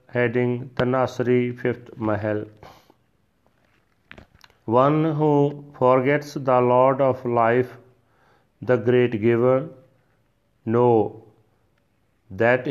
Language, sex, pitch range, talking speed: Punjabi, male, 110-130 Hz, 75 wpm